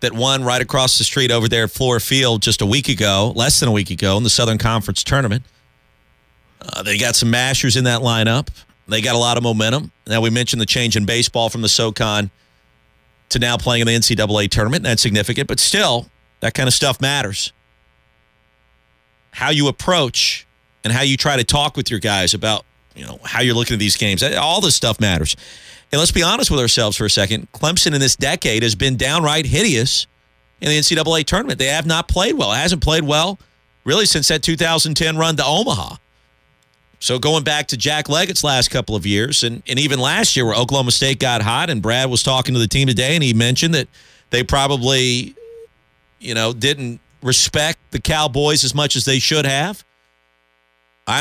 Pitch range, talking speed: 105-140 Hz, 205 wpm